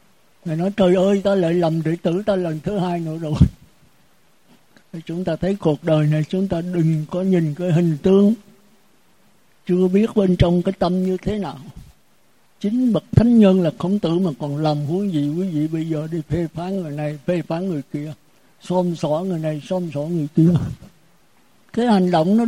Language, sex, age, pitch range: Vietnamese, male, 60-79, 165-200 Hz